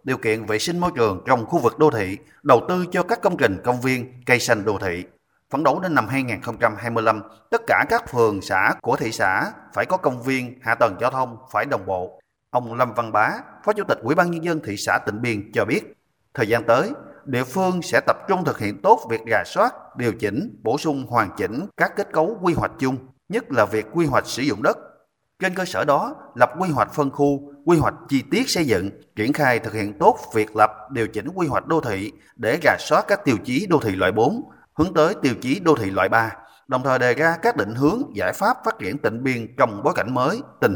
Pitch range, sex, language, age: 110-155 Hz, male, Vietnamese, 30-49